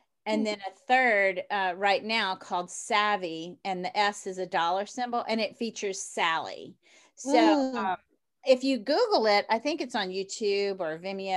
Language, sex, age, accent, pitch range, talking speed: English, female, 40-59, American, 190-240 Hz, 175 wpm